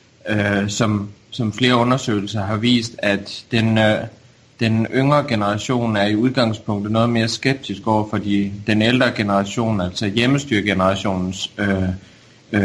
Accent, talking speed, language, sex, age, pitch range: native, 125 wpm, Danish, male, 30-49, 100-120 Hz